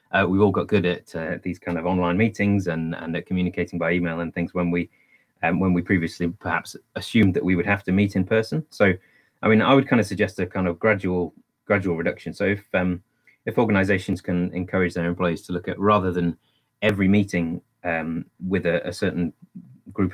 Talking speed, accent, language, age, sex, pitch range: 215 wpm, British, English, 30-49, male, 85-100 Hz